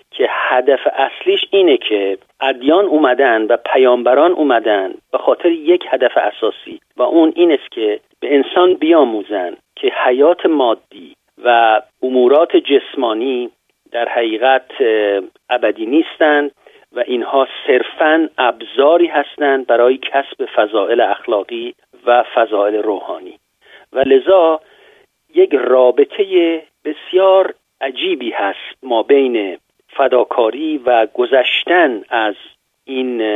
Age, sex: 50-69, male